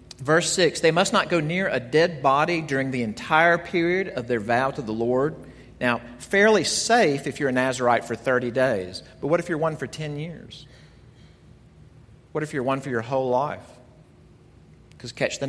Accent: American